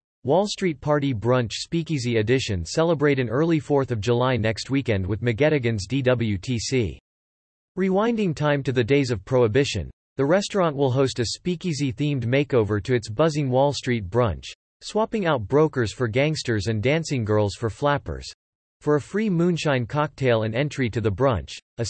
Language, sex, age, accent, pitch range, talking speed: English, male, 40-59, American, 115-150 Hz, 160 wpm